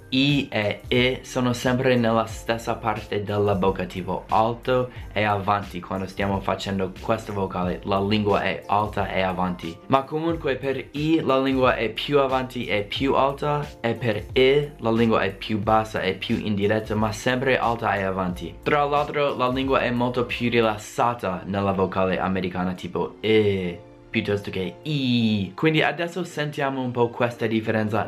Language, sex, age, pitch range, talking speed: Italian, male, 20-39, 100-125 Hz, 160 wpm